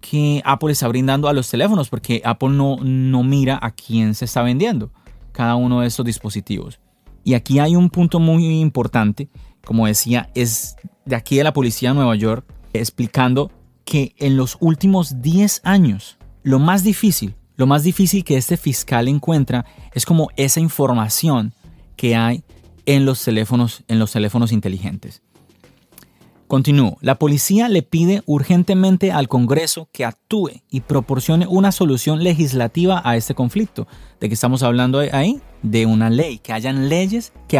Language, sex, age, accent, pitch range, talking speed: Spanish, male, 30-49, Colombian, 120-160 Hz, 160 wpm